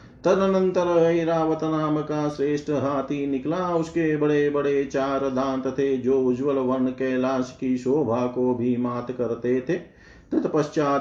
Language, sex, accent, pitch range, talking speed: Hindi, male, native, 125-150 Hz, 105 wpm